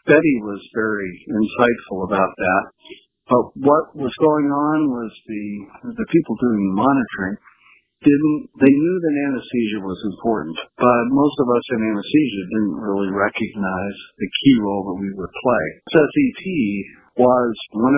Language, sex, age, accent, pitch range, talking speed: English, male, 50-69, American, 95-130 Hz, 150 wpm